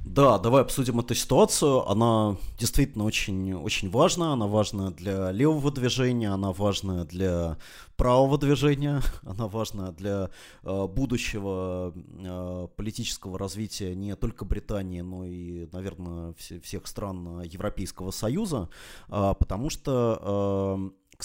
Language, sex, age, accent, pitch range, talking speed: Russian, male, 30-49, native, 95-125 Hz, 110 wpm